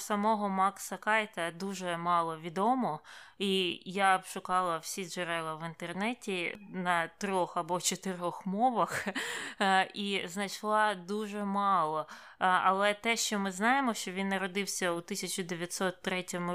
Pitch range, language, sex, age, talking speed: 185-215 Hz, Ukrainian, female, 20-39, 115 wpm